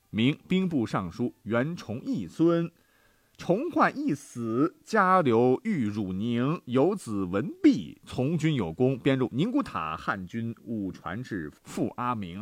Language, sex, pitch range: Chinese, male, 105-170 Hz